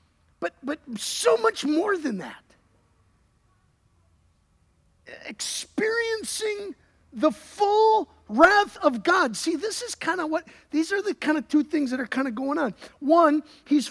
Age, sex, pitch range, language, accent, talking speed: 50-69, male, 220-325 Hz, English, American, 145 wpm